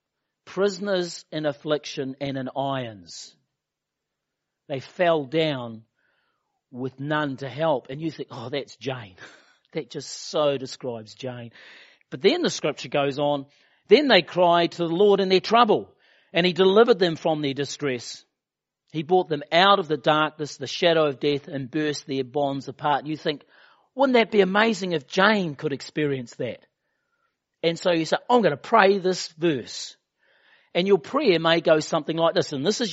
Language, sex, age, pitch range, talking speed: English, male, 40-59, 145-195 Hz, 170 wpm